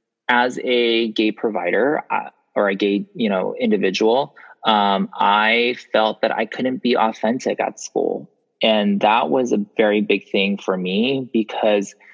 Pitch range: 100-130 Hz